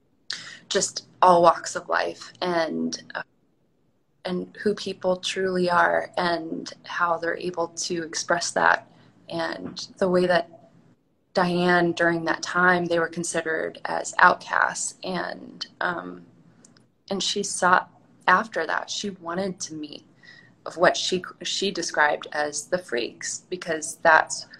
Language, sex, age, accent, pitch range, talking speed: English, female, 20-39, American, 160-185 Hz, 130 wpm